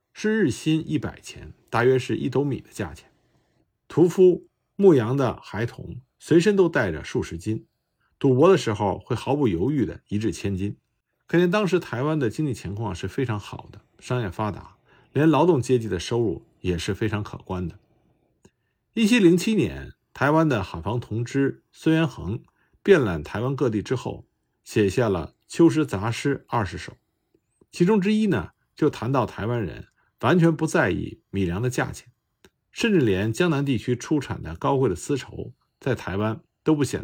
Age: 50-69